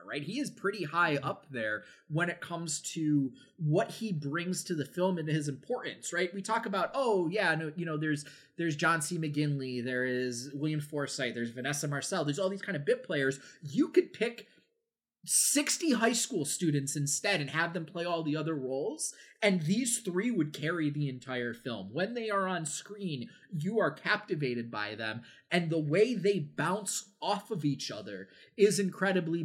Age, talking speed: 20-39, 185 wpm